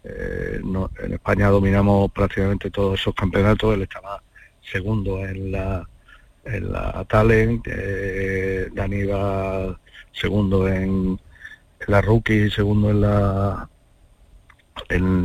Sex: male